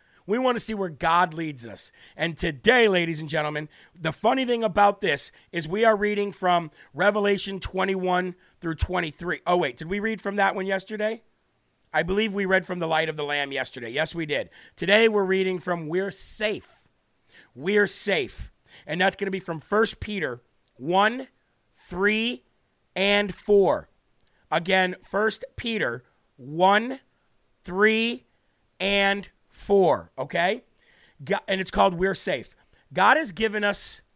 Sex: male